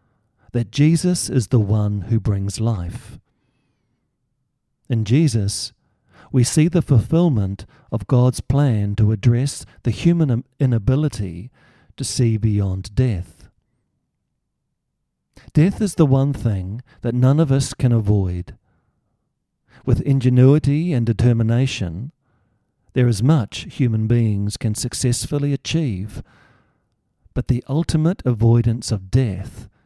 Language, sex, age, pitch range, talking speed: English, male, 50-69, 105-135 Hz, 110 wpm